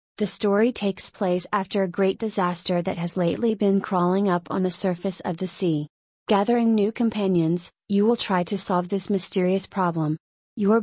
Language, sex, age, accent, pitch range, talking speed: English, female, 30-49, American, 180-205 Hz, 175 wpm